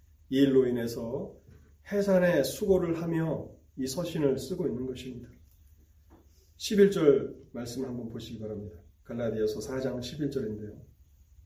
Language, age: Korean, 30-49